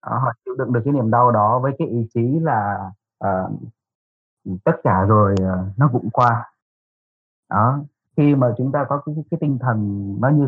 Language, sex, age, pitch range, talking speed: Vietnamese, male, 20-39, 105-130 Hz, 195 wpm